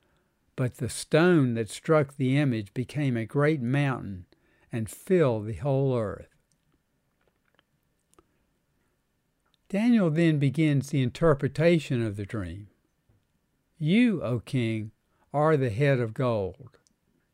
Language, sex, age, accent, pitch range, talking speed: English, male, 60-79, American, 120-155 Hz, 110 wpm